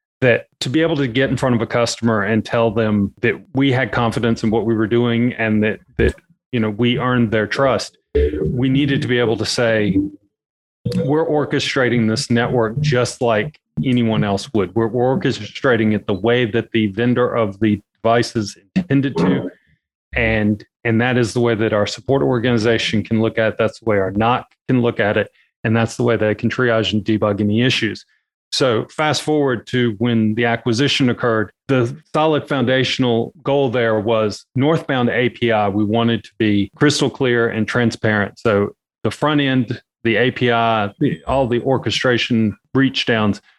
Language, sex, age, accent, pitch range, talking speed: English, male, 30-49, American, 110-130 Hz, 180 wpm